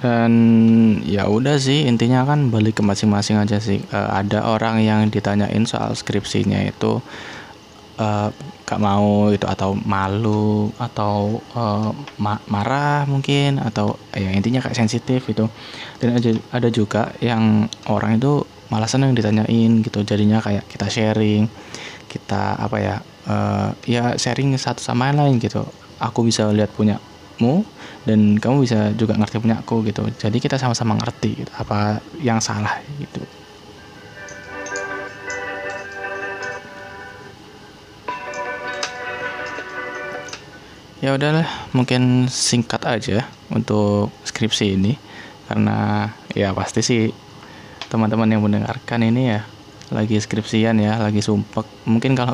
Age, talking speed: 20-39, 120 wpm